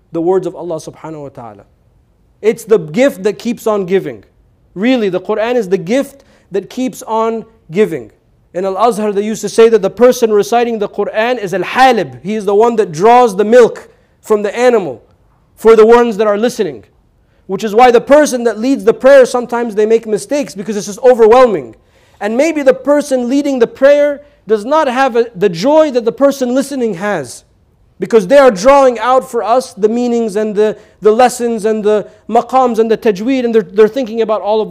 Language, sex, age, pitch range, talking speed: English, male, 40-59, 205-255 Hz, 200 wpm